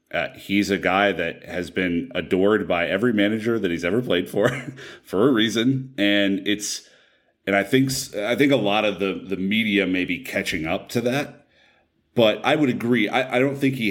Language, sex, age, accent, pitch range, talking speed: English, male, 30-49, American, 90-105 Hz, 205 wpm